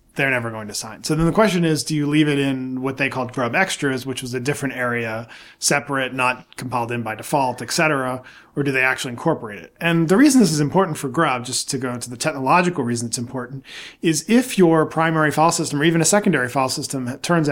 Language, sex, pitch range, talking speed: English, male, 120-155 Hz, 235 wpm